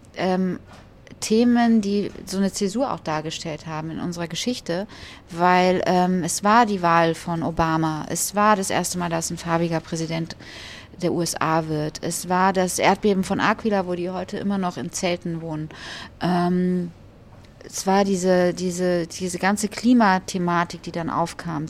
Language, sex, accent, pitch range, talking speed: German, female, German, 165-200 Hz, 155 wpm